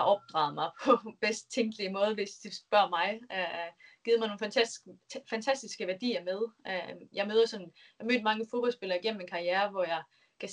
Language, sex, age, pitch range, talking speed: Danish, female, 20-39, 180-225 Hz, 155 wpm